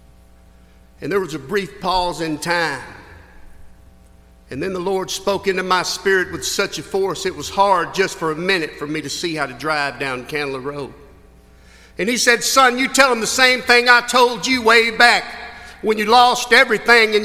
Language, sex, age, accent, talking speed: English, male, 50-69, American, 200 wpm